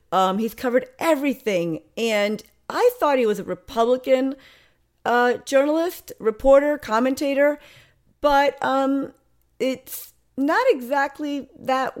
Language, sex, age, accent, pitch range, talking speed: English, female, 40-59, American, 200-270 Hz, 105 wpm